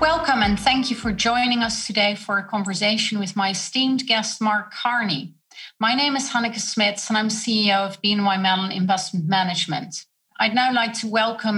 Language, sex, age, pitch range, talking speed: English, female, 30-49, 195-235 Hz, 180 wpm